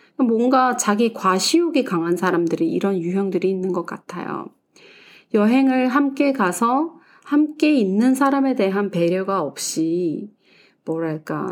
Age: 30-49